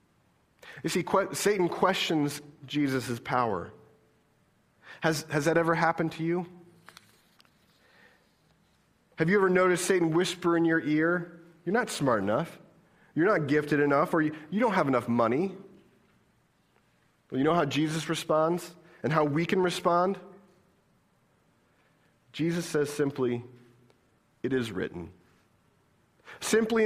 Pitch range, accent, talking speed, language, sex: 140-185 Hz, American, 125 wpm, English, male